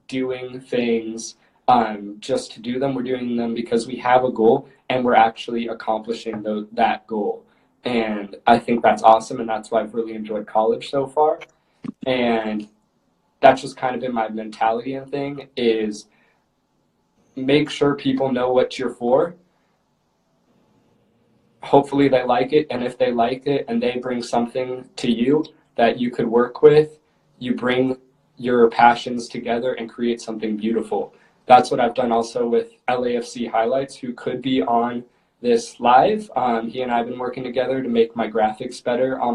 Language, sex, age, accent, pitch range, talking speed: English, male, 20-39, American, 115-130 Hz, 170 wpm